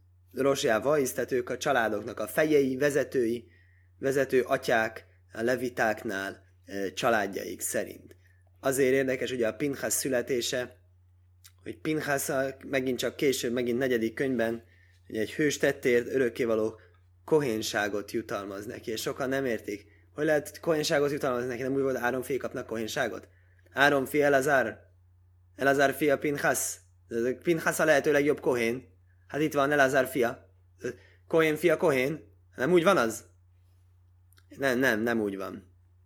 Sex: male